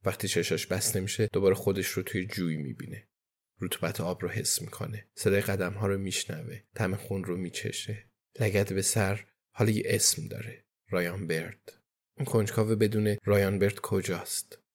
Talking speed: 145 wpm